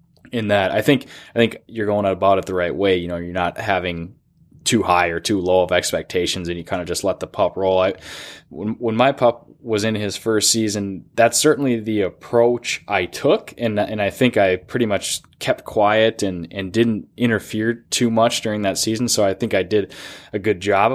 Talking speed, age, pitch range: 215 wpm, 10-29, 95-115 Hz